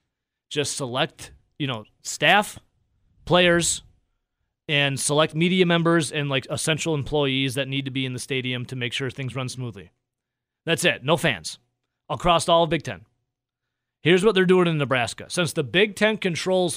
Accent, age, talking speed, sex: American, 30-49, 170 wpm, male